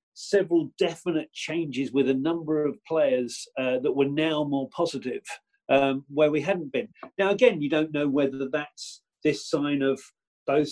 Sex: male